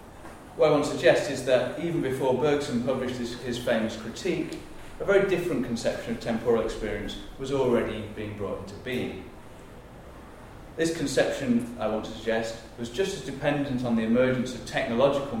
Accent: British